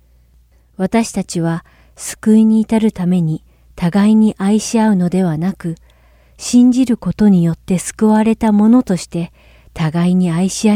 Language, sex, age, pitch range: Japanese, female, 40-59, 140-215 Hz